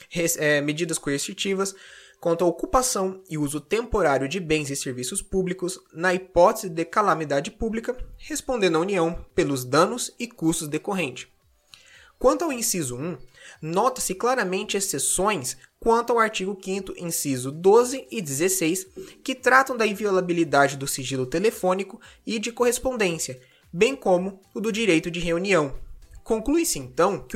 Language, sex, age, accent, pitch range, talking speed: Portuguese, male, 20-39, Brazilian, 160-220 Hz, 135 wpm